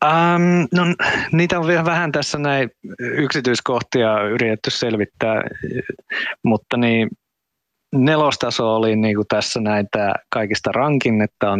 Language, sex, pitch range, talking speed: Finnish, male, 105-130 Hz, 115 wpm